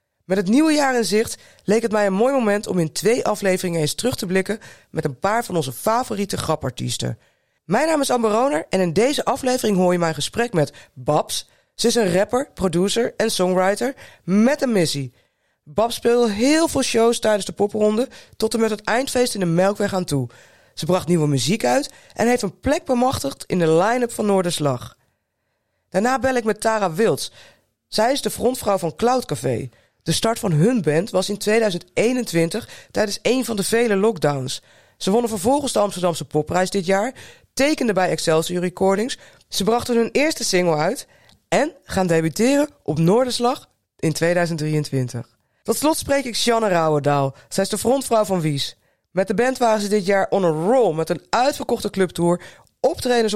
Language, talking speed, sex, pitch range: English, 185 wpm, female, 175-235 Hz